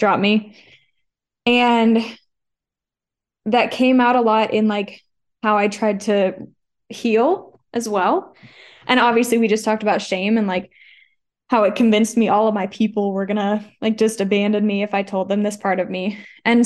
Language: English